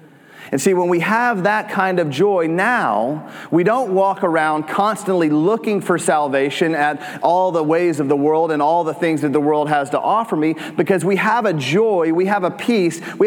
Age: 30-49